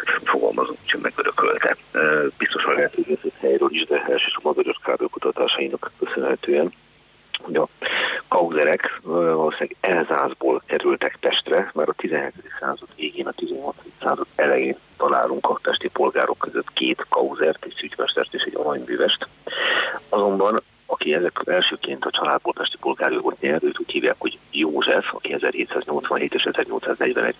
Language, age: Hungarian, 50-69